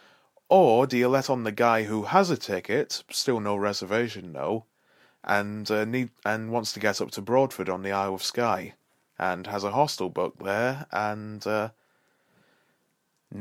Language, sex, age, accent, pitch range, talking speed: English, male, 20-39, British, 100-125 Hz, 170 wpm